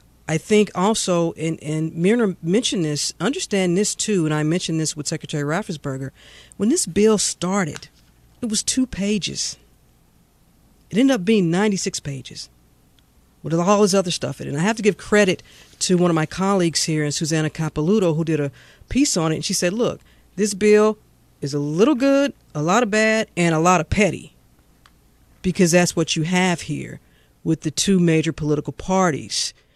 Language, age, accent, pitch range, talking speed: English, 40-59, American, 155-195 Hz, 185 wpm